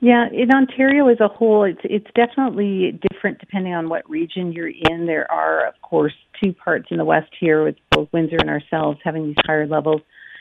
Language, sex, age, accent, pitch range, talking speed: English, female, 50-69, American, 155-180 Hz, 200 wpm